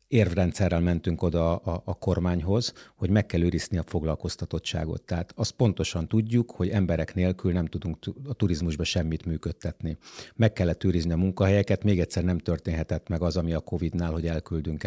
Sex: male